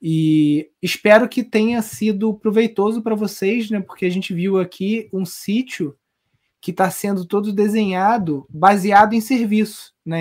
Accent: Brazilian